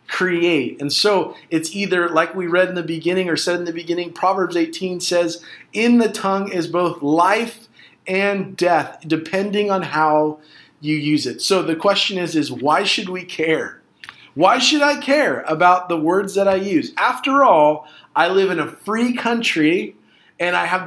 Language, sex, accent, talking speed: English, male, American, 180 wpm